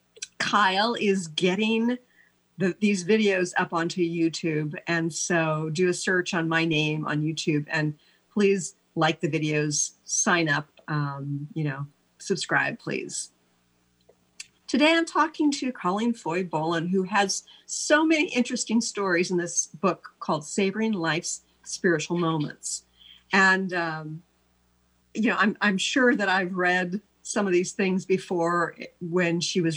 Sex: female